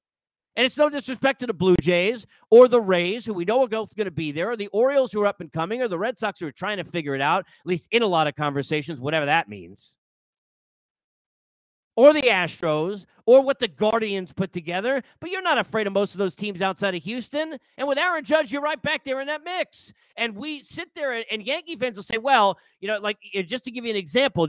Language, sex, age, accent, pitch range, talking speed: English, male, 40-59, American, 175-270 Hz, 245 wpm